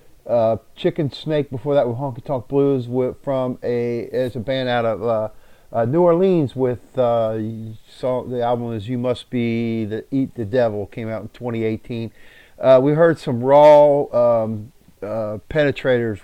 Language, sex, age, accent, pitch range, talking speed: English, male, 50-69, American, 115-135 Hz, 175 wpm